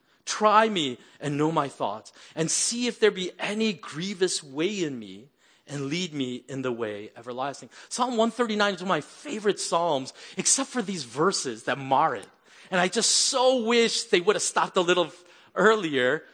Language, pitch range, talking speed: English, 155-235 Hz, 185 wpm